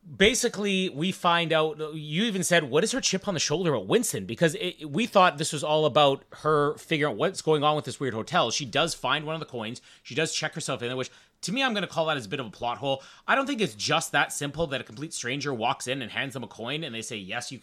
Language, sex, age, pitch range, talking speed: English, male, 30-49, 130-170 Hz, 285 wpm